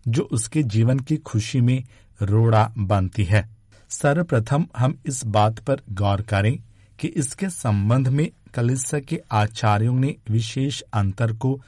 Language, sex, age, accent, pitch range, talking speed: Hindi, male, 50-69, native, 105-135 Hz, 135 wpm